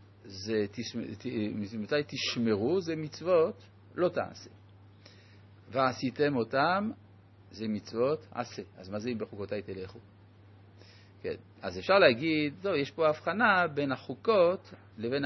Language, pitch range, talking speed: Hebrew, 100-155 Hz, 115 wpm